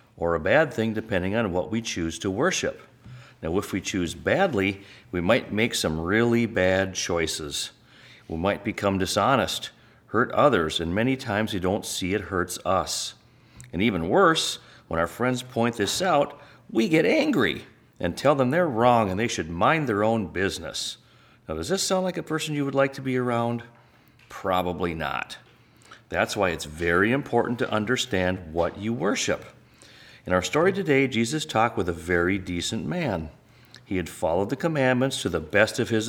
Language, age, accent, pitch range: English, 40-59, American, 90-125 Hz